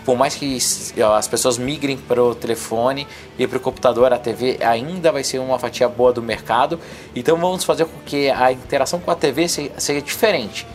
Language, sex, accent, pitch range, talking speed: Portuguese, male, Brazilian, 130-165 Hz, 200 wpm